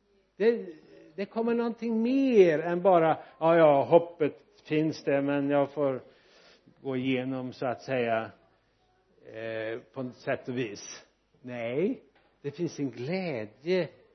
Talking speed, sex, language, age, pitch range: 130 wpm, male, Swedish, 60-79, 145-185 Hz